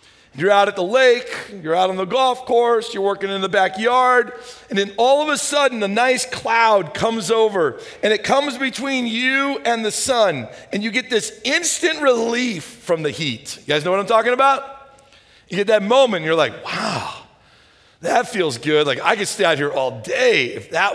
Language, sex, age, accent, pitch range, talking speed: English, male, 40-59, American, 185-260 Hz, 205 wpm